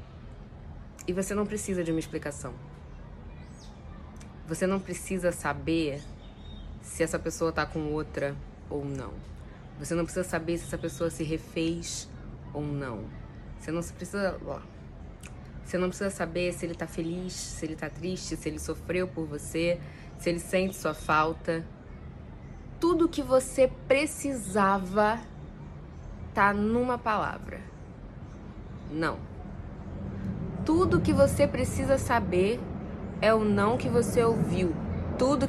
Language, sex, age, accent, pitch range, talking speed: Portuguese, female, 20-39, Brazilian, 155-210 Hz, 125 wpm